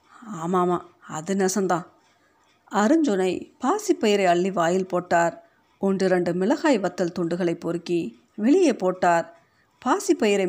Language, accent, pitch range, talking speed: Tamil, native, 180-260 Hz, 95 wpm